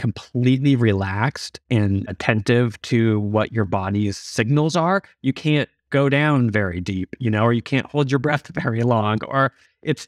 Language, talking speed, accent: English, 165 wpm, American